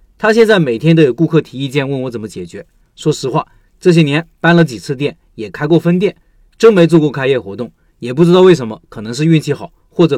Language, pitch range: Chinese, 140-180 Hz